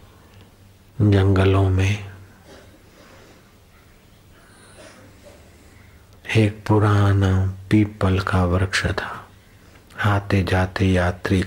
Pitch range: 95-100 Hz